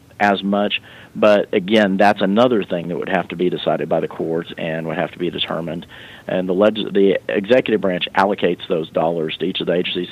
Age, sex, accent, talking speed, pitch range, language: 40-59, male, American, 210 wpm, 95-110 Hz, English